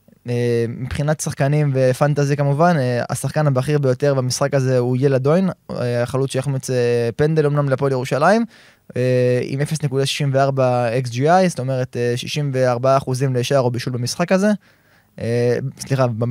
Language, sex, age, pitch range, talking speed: Hebrew, male, 20-39, 125-155 Hz, 110 wpm